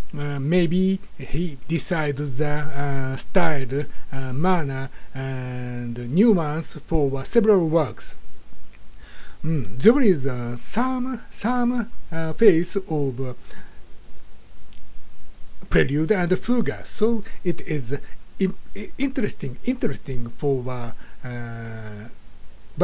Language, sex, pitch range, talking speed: English, male, 130-200 Hz, 95 wpm